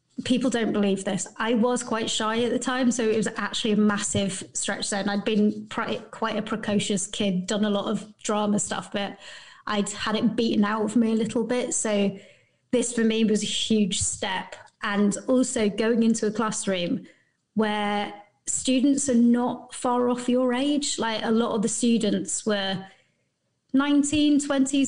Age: 30-49